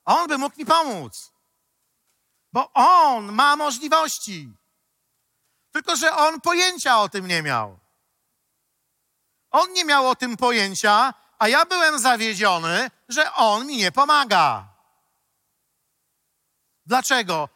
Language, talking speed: Polish, 115 wpm